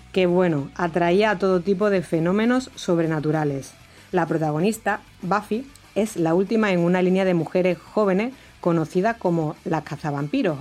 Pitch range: 165-195 Hz